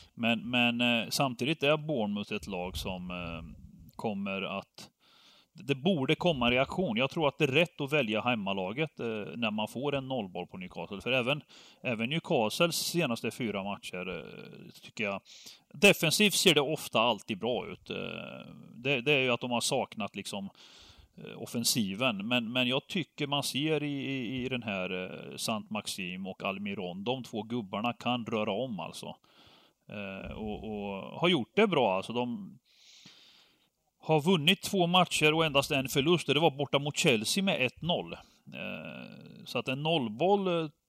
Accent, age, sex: native, 30-49, male